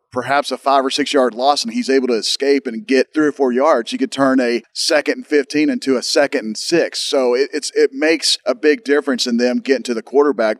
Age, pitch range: 40-59, 125-145 Hz